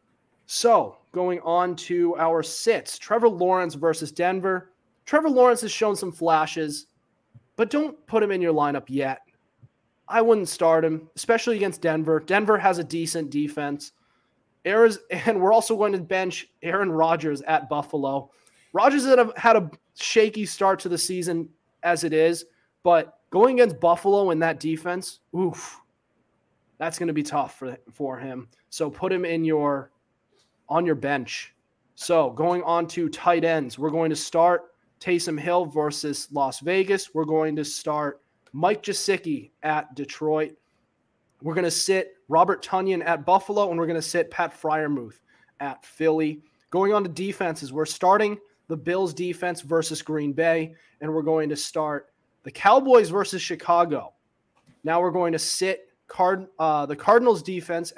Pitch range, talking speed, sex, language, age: 155-190 Hz, 160 wpm, male, English, 30-49